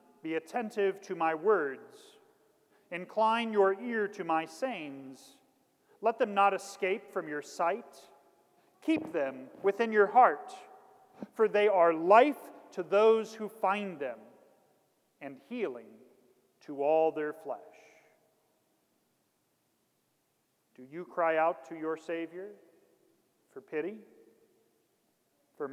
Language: English